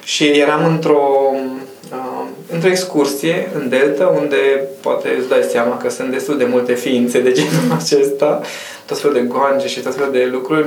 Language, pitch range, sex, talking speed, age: Romanian, 135-190 Hz, male, 175 wpm, 20-39